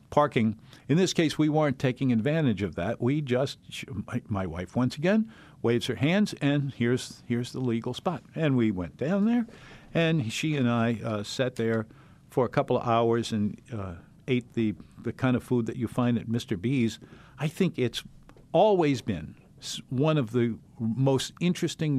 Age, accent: 50-69, American